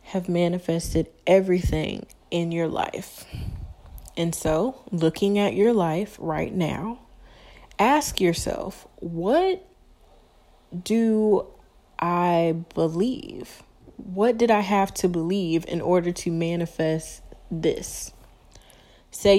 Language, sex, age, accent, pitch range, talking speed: English, female, 20-39, American, 165-195 Hz, 100 wpm